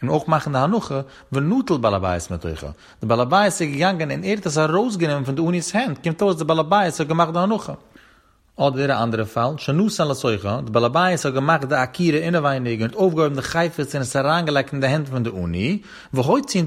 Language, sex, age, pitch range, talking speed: Hebrew, male, 30-49, 125-175 Hz, 185 wpm